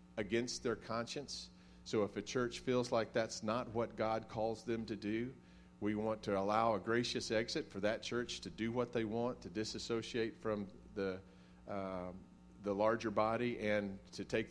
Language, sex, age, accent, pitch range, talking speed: English, male, 40-59, American, 95-120 Hz, 180 wpm